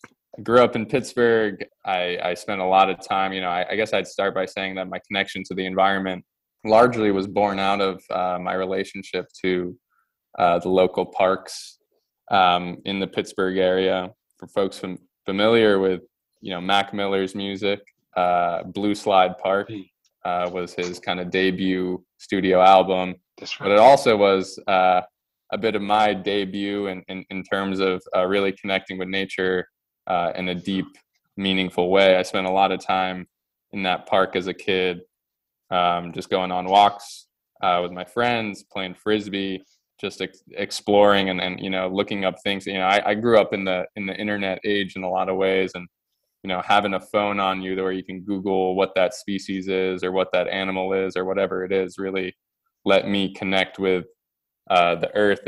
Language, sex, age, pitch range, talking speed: English, male, 20-39, 90-100 Hz, 190 wpm